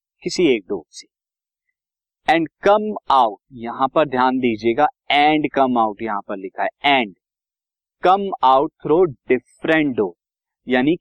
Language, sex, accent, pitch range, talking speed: Hindi, male, native, 115-155 Hz, 135 wpm